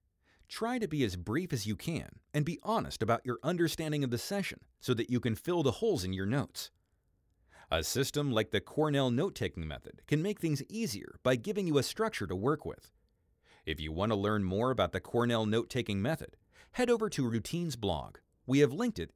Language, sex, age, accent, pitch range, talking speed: English, male, 30-49, American, 105-155 Hz, 205 wpm